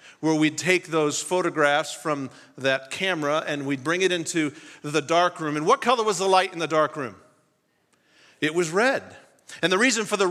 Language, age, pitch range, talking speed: English, 40-59, 150-190 Hz, 200 wpm